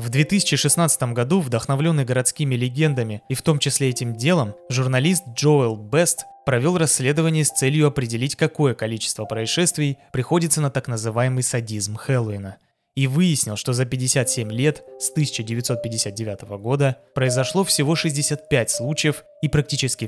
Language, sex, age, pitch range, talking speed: Russian, male, 20-39, 120-155 Hz, 130 wpm